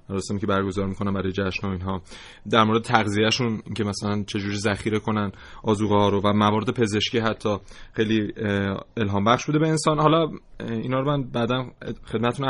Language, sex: Persian, male